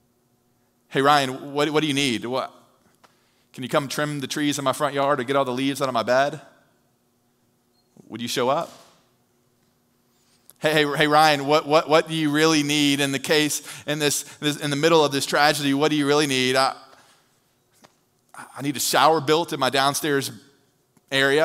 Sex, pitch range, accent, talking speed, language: male, 120-150 Hz, American, 195 wpm, English